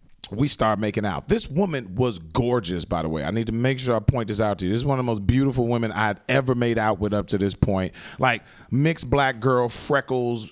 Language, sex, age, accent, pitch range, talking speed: English, male, 30-49, American, 100-130 Hz, 255 wpm